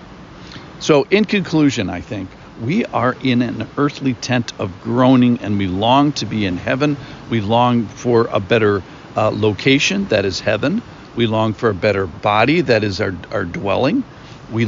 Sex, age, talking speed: male, 50-69, 170 wpm